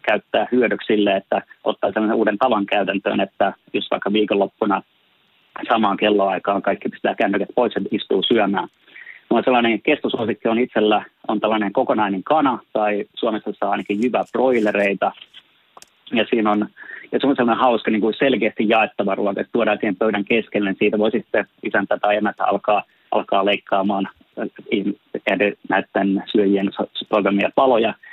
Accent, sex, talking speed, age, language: native, male, 145 wpm, 30-49, Finnish